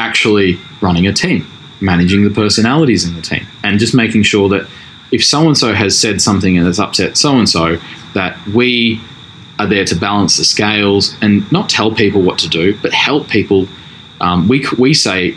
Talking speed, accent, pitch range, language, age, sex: 180 wpm, Australian, 90-110 Hz, English, 20-39, male